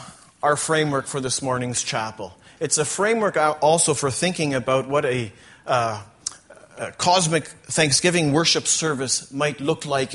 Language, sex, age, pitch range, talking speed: English, male, 40-59, 125-155 Hz, 140 wpm